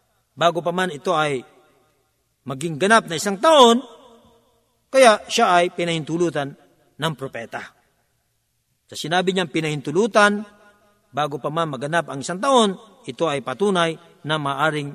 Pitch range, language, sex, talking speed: 140-195 Hz, Filipino, male, 130 wpm